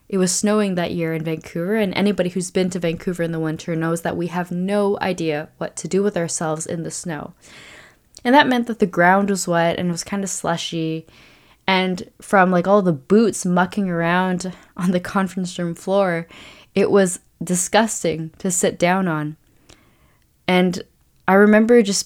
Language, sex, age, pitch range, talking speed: English, female, 10-29, 175-205 Hz, 185 wpm